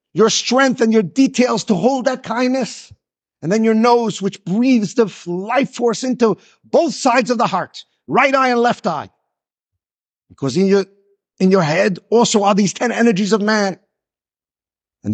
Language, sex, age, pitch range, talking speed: English, male, 50-69, 205-245 Hz, 165 wpm